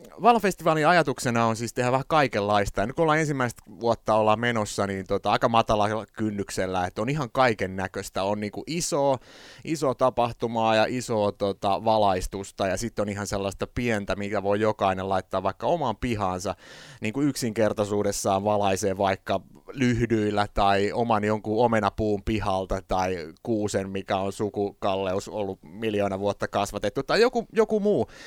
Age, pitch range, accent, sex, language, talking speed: 30-49, 100-125 Hz, native, male, Finnish, 150 wpm